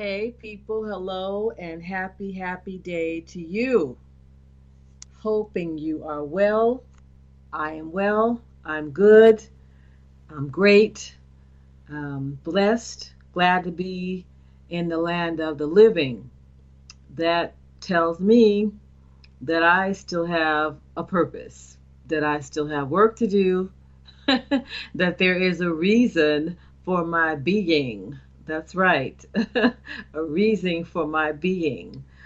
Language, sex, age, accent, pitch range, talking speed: English, female, 40-59, American, 125-185 Hz, 115 wpm